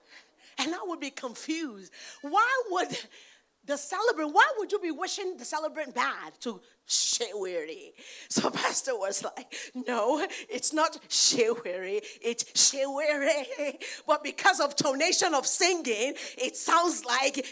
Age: 40-59